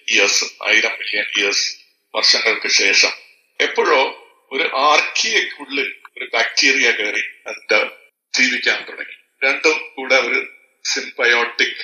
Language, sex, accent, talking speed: Malayalam, male, native, 95 wpm